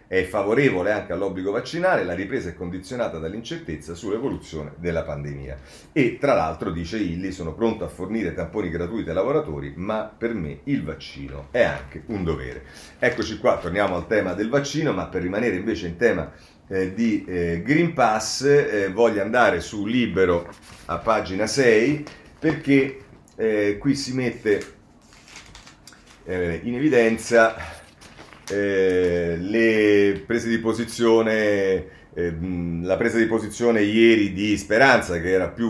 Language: Italian